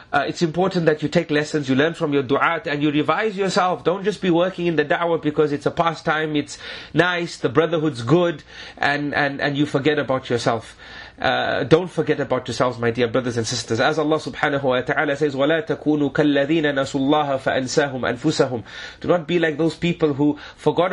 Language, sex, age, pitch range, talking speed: English, male, 30-49, 145-175 Hz, 200 wpm